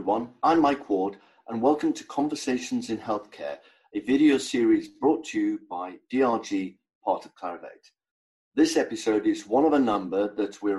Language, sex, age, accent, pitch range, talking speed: English, male, 50-69, British, 105-165 Hz, 160 wpm